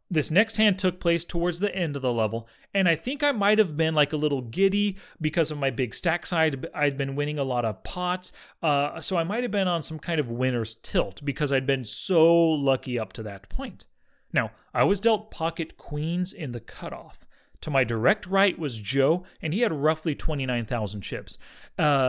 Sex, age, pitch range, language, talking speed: male, 30-49, 135-185 Hz, English, 210 wpm